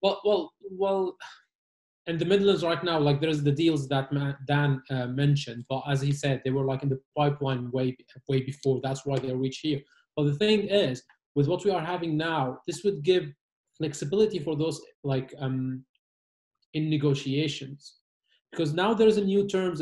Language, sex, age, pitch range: English, male, 30-49, 135-175 Hz